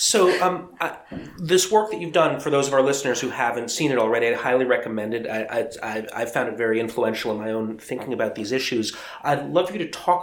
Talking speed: 245 wpm